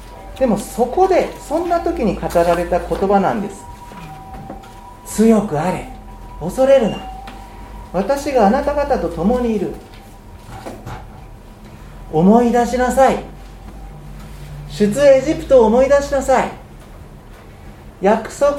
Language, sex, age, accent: Japanese, male, 40-59, native